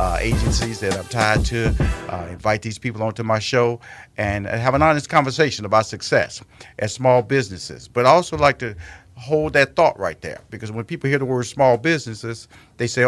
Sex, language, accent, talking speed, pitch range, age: male, English, American, 195 wpm, 100-125 Hz, 50-69